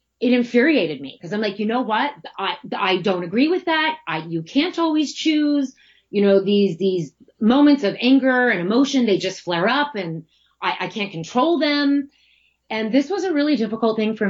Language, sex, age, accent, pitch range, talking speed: English, female, 30-49, American, 170-255 Hz, 195 wpm